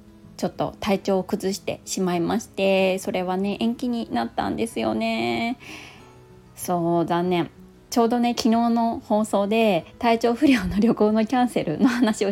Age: 20-39